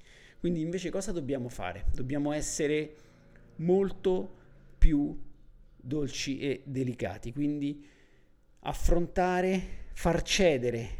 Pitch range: 125-160 Hz